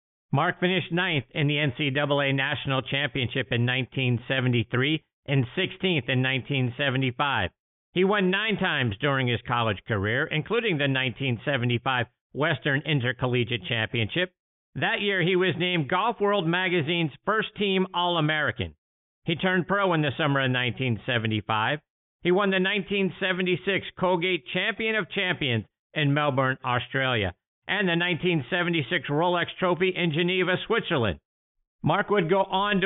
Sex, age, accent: male, 50-69, American